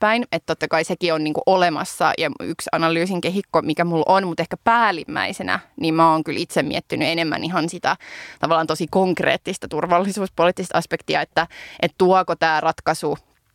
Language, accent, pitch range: Finnish, native, 160-180 Hz